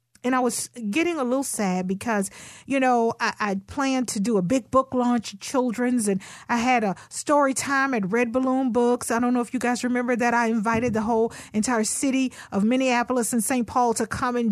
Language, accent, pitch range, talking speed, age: English, American, 210-260 Hz, 215 wpm, 40-59